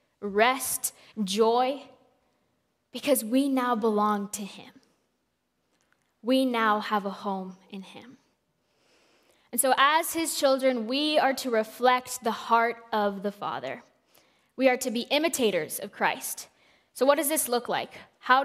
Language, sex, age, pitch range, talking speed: English, female, 10-29, 210-255 Hz, 140 wpm